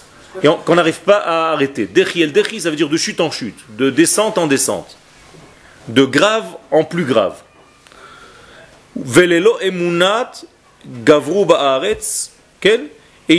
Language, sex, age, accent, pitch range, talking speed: French, male, 40-59, French, 160-220 Hz, 135 wpm